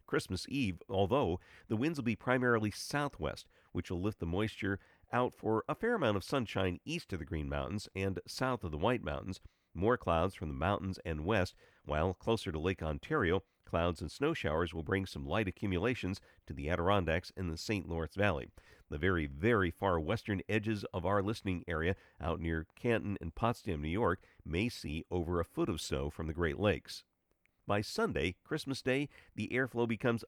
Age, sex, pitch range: 50-69, male, 85-110 Hz